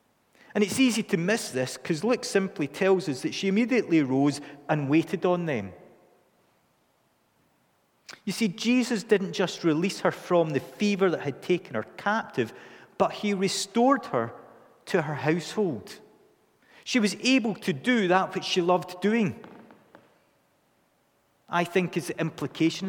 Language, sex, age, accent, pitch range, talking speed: English, male, 40-59, British, 150-200 Hz, 145 wpm